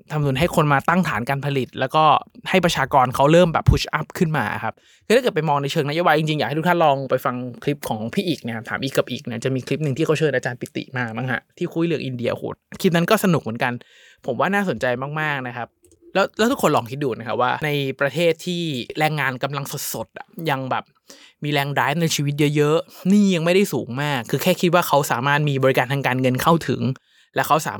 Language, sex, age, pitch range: Thai, male, 20-39, 130-170 Hz